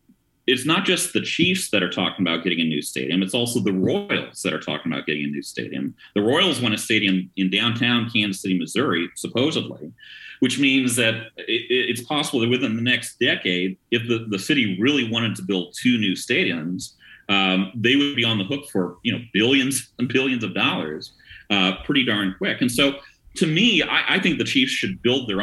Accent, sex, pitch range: American, male, 95-125 Hz